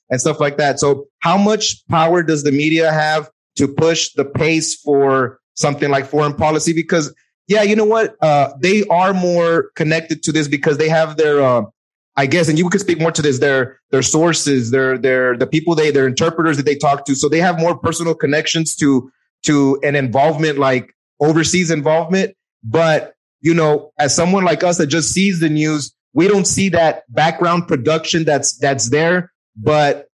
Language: English